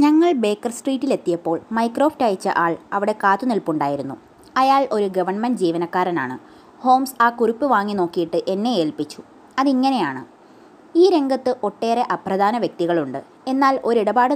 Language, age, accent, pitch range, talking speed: Malayalam, 20-39, native, 190-275 Hz, 115 wpm